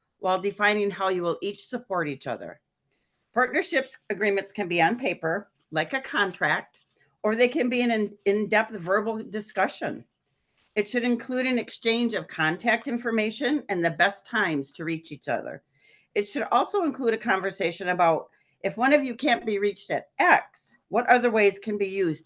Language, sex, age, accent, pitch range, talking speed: English, female, 40-59, American, 175-235 Hz, 175 wpm